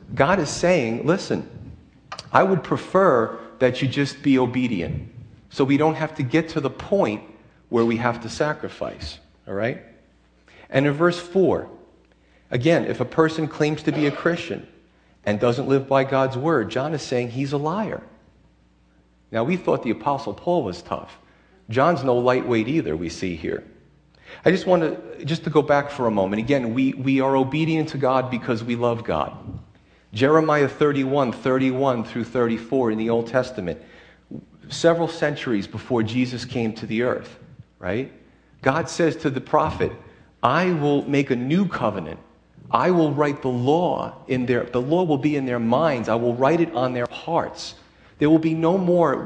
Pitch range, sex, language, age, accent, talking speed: 115-150 Hz, male, English, 40-59, American, 175 wpm